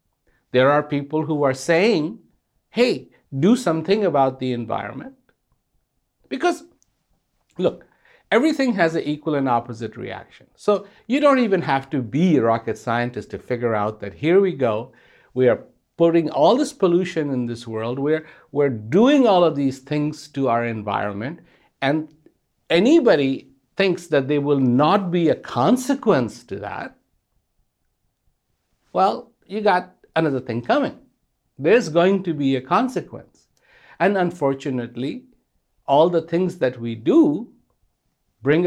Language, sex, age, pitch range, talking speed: English, male, 60-79, 125-180 Hz, 140 wpm